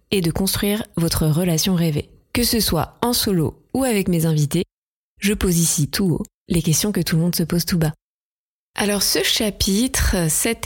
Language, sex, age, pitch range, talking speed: French, female, 20-39, 170-210 Hz, 190 wpm